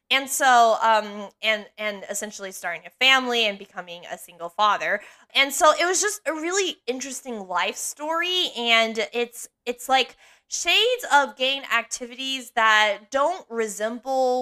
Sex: female